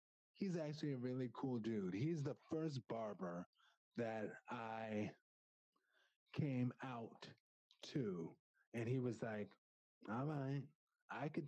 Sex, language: male, English